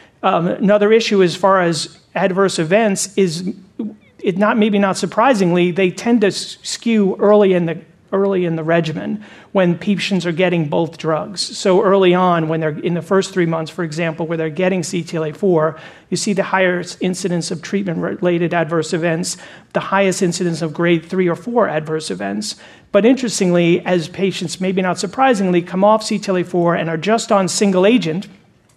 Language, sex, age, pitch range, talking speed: English, male, 40-59, 170-195 Hz, 165 wpm